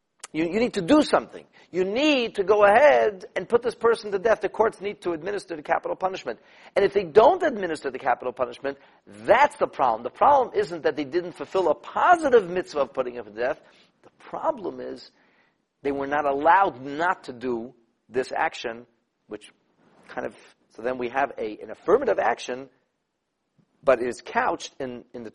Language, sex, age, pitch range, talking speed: English, male, 50-69, 120-190 Hz, 190 wpm